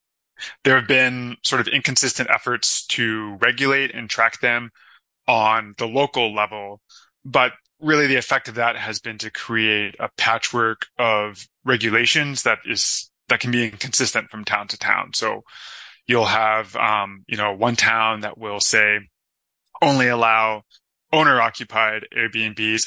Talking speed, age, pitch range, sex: 145 wpm, 20-39, 110-120 Hz, male